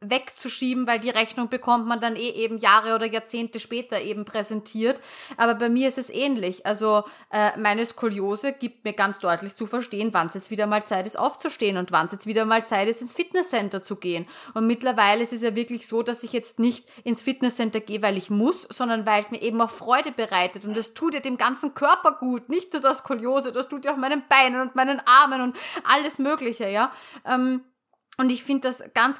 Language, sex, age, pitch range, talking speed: German, female, 30-49, 215-255 Hz, 220 wpm